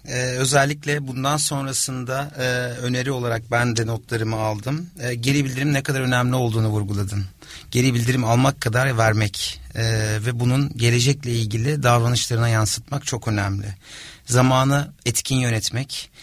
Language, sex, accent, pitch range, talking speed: Turkish, male, native, 115-140 Hz, 135 wpm